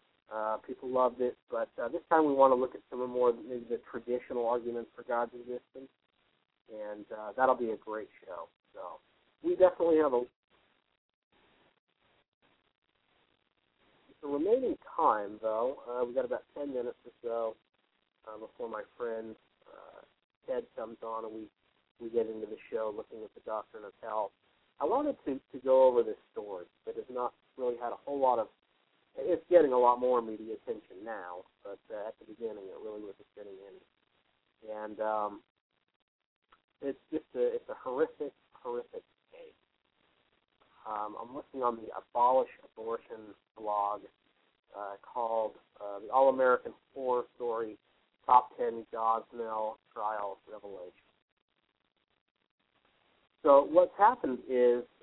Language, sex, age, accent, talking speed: English, male, 40-59, American, 150 wpm